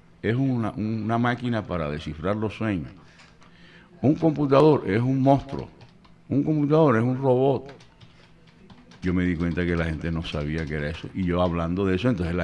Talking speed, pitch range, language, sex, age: 180 wpm, 100-145 Hz, Spanish, male, 60-79